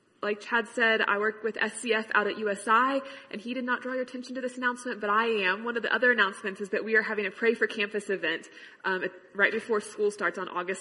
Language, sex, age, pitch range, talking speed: English, female, 20-39, 185-230 Hz, 255 wpm